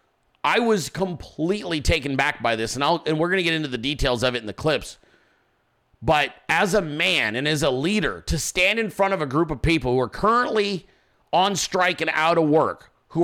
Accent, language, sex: American, English, male